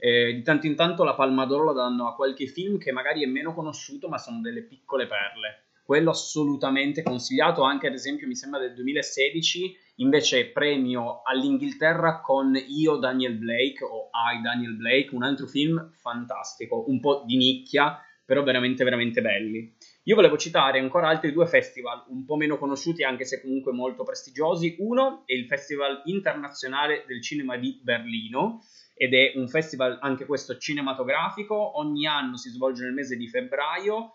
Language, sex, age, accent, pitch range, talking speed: Italian, male, 20-39, native, 130-180 Hz, 170 wpm